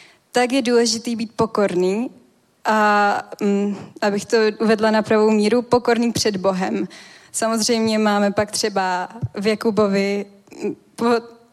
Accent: native